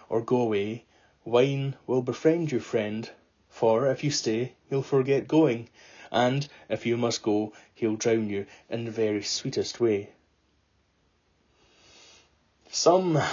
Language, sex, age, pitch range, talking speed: English, male, 30-49, 105-130 Hz, 135 wpm